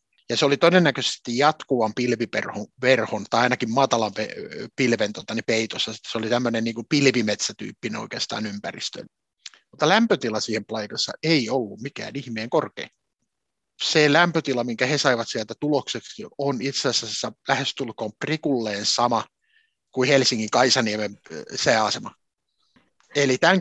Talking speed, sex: 115 wpm, male